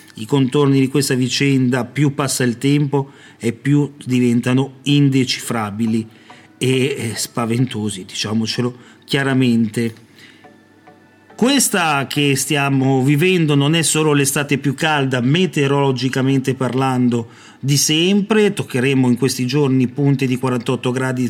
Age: 40-59